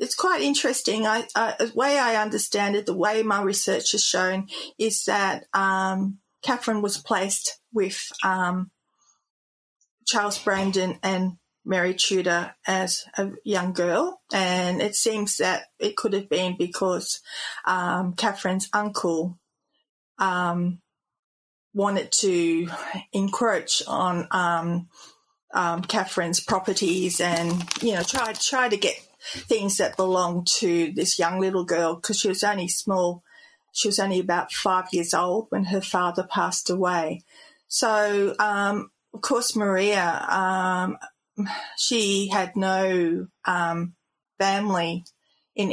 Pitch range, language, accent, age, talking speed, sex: 180-210 Hz, English, Australian, 30-49, 125 wpm, female